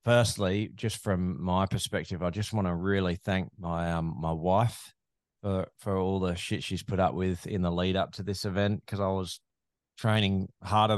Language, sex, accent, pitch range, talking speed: English, male, Australian, 90-105 Hz, 195 wpm